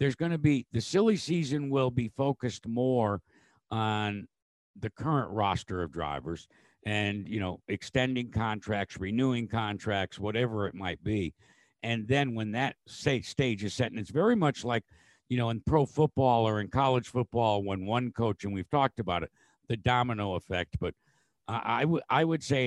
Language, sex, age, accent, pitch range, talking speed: English, male, 60-79, American, 90-120 Hz, 175 wpm